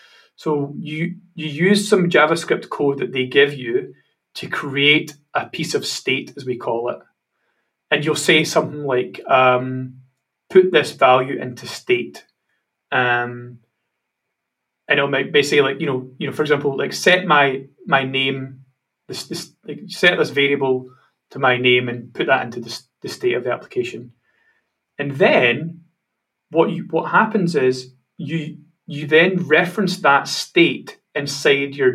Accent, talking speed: British, 155 wpm